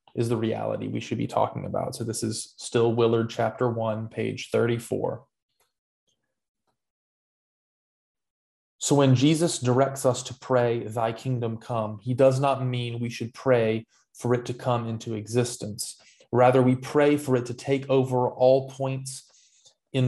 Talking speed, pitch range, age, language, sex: 150 wpm, 120-135 Hz, 20-39, English, male